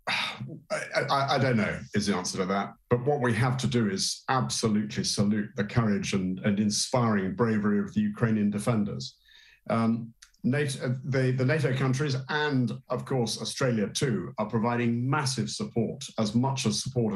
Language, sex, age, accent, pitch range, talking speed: English, male, 50-69, British, 105-135 Hz, 170 wpm